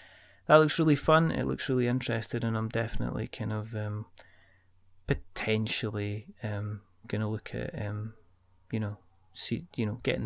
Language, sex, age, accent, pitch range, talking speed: English, male, 30-49, British, 105-135 Hz, 150 wpm